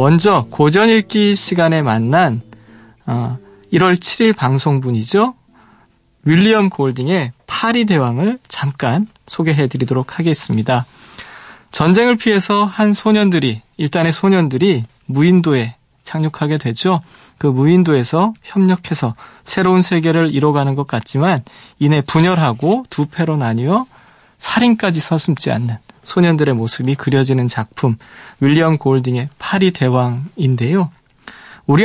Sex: male